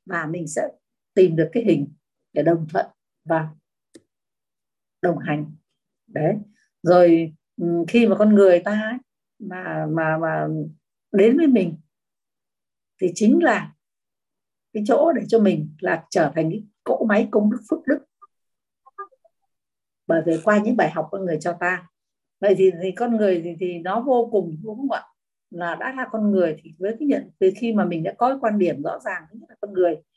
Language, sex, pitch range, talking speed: Vietnamese, female, 165-215 Hz, 175 wpm